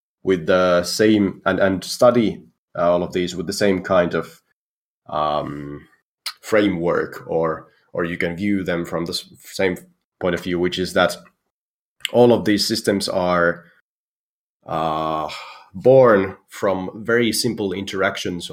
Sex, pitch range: male, 85-110 Hz